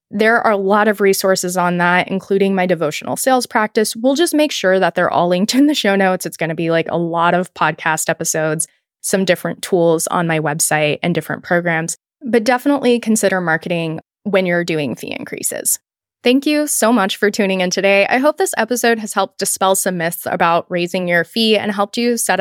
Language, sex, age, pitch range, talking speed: English, female, 20-39, 185-230 Hz, 210 wpm